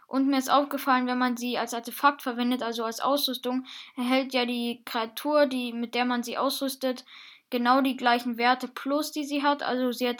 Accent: German